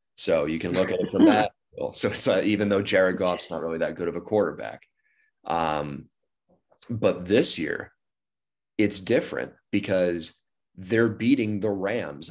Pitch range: 85-100 Hz